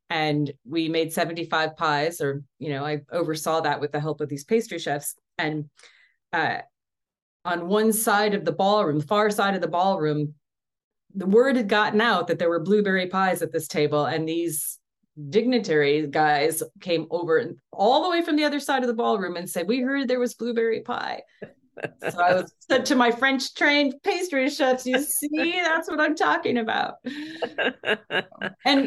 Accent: American